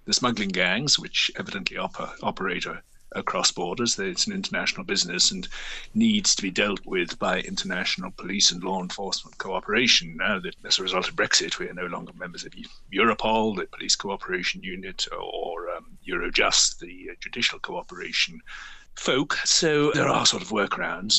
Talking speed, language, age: 160 wpm, English, 60-79